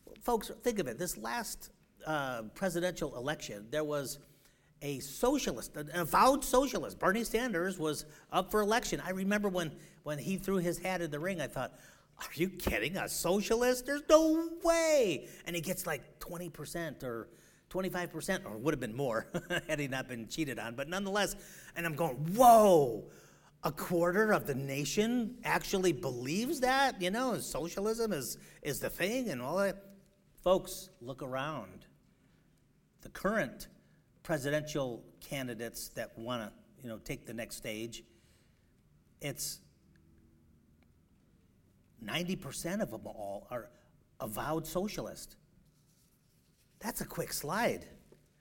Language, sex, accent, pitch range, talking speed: English, male, American, 150-215 Hz, 140 wpm